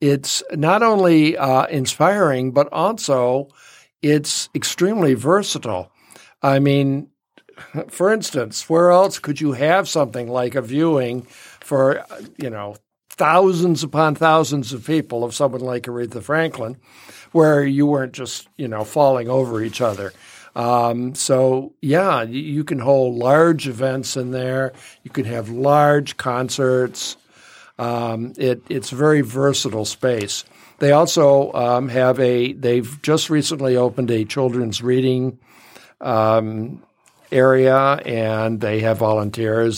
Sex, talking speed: male, 130 wpm